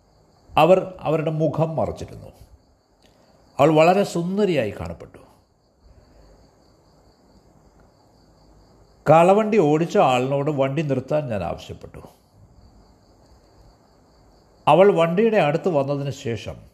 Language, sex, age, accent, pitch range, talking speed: Malayalam, male, 60-79, native, 105-160 Hz, 70 wpm